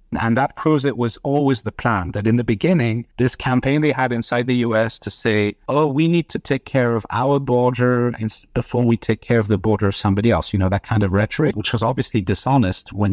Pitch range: 105-130 Hz